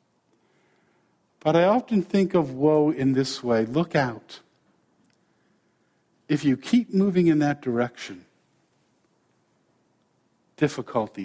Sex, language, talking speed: male, English, 100 wpm